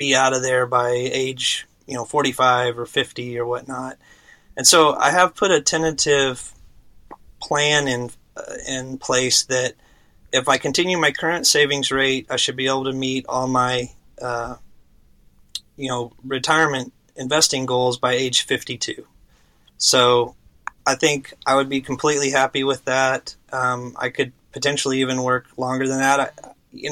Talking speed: 155 wpm